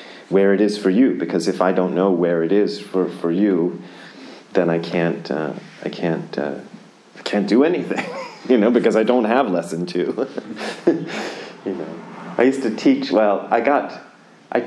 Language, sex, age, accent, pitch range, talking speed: English, male, 40-59, American, 90-110 Hz, 185 wpm